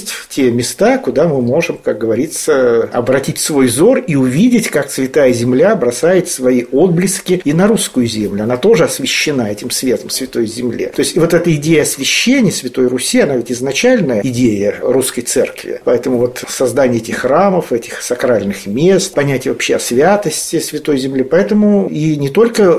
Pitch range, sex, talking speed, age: 125-170 Hz, male, 160 wpm, 50-69